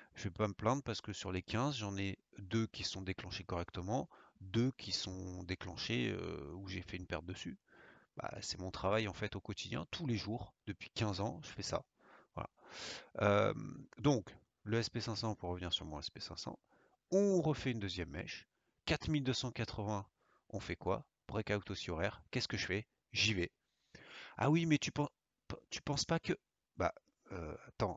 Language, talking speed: French, 185 wpm